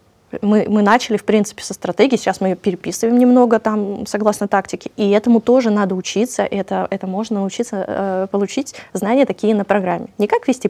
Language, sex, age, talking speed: Russian, female, 20-39, 180 wpm